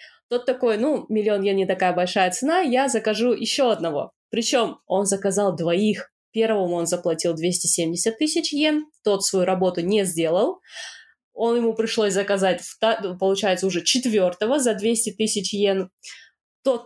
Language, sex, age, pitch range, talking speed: Russian, female, 20-39, 190-255 Hz, 145 wpm